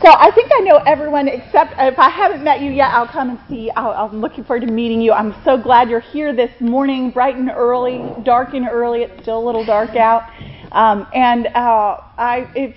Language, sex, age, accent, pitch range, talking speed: English, female, 30-49, American, 200-250 Hz, 215 wpm